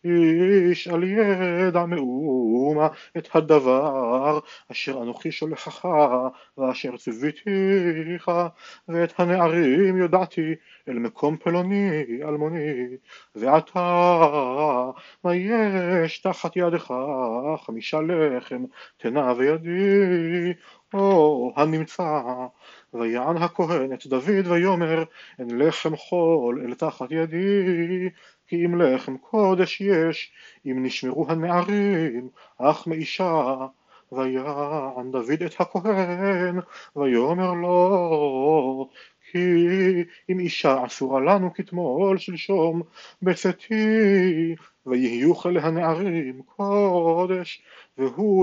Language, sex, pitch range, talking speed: Hebrew, male, 145-185 Hz, 85 wpm